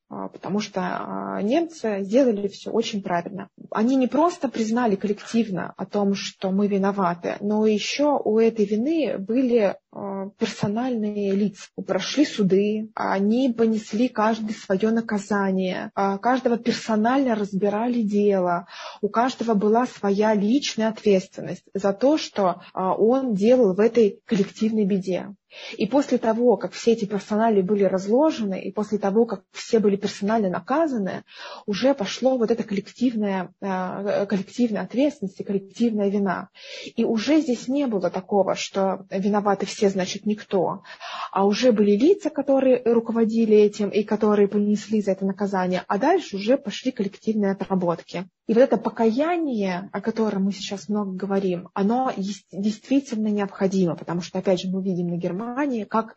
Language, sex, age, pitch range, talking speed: Russian, female, 20-39, 195-230 Hz, 140 wpm